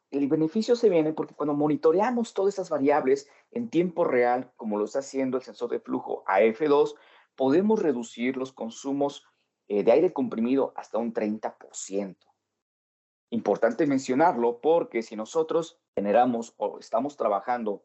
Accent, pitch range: Mexican, 115-170 Hz